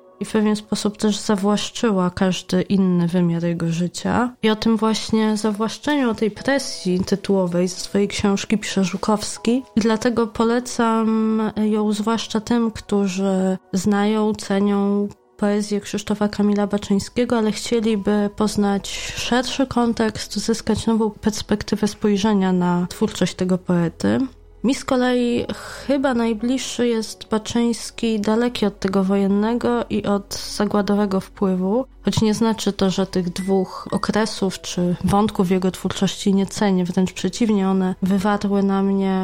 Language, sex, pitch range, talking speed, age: Polish, female, 185-220 Hz, 130 wpm, 20-39